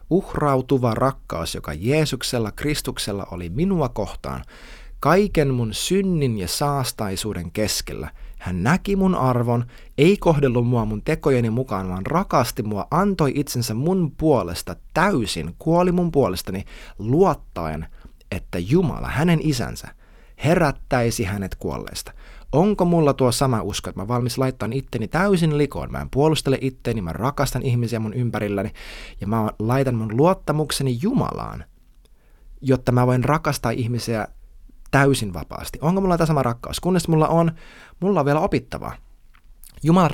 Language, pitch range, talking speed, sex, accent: Finnish, 110-155 Hz, 135 wpm, male, native